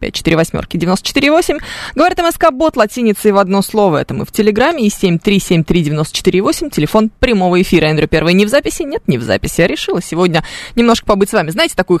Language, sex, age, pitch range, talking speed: Russian, female, 20-39, 180-255 Hz, 205 wpm